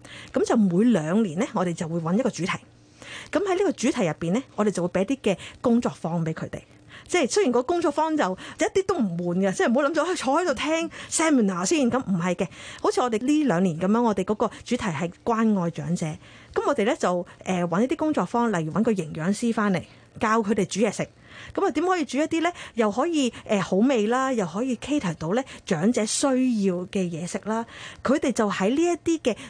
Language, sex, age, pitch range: Chinese, female, 30-49, 185-265 Hz